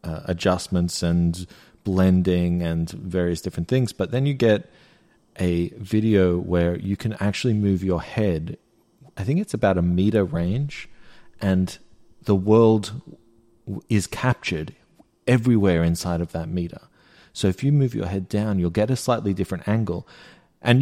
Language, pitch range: English, 90-115 Hz